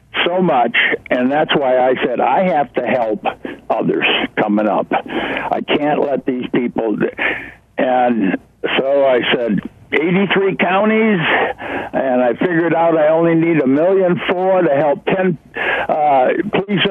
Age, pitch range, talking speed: 60-79, 140-180 Hz, 145 wpm